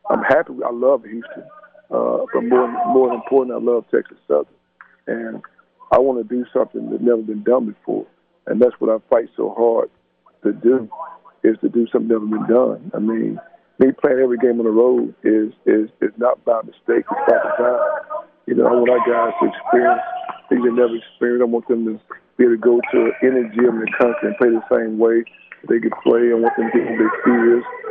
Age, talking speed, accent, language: 50-69, 220 wpm, American, English